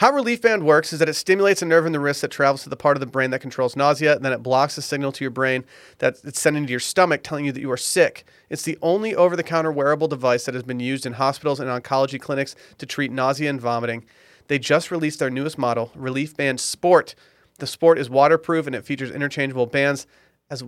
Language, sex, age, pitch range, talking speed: English, male, 30-49, 130-165 Hz, 250 wpm